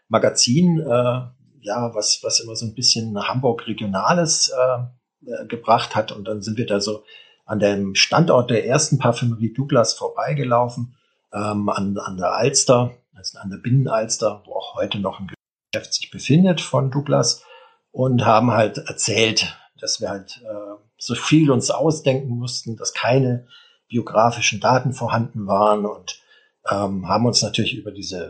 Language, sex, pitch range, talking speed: German, male, 105-135 Hz, 155 wpm